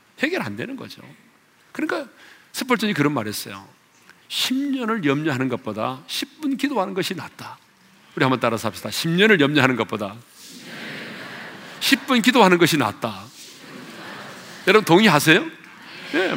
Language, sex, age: Korean, male, 40-59